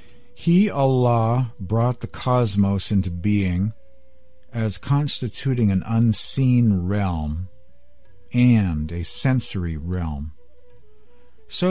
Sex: male